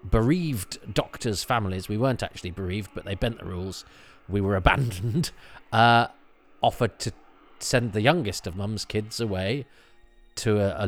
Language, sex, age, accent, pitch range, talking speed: English, male, 40-59, British, 95-115 Hz, 155 wpm